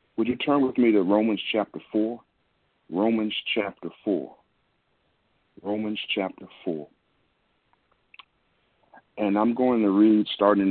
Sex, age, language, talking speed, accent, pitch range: male, 40-59, English, 120 wpm, American, 90-110 Hz